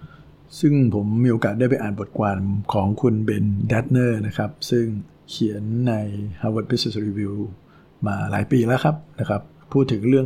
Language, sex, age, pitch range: Thai, male, 60-79, 105-130 Hz